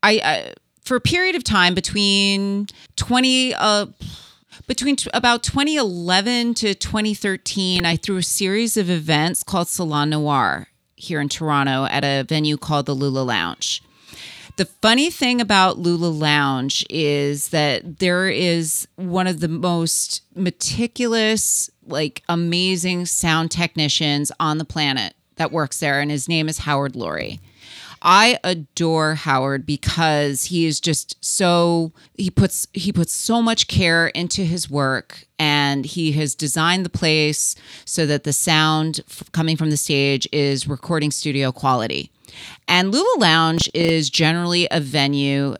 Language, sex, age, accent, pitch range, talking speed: English, female, 30-49, American, 145-185 Hz, 145 wpm